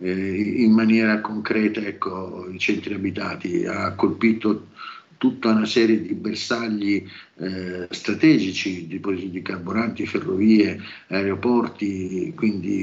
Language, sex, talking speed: Italian, male, 105 wpm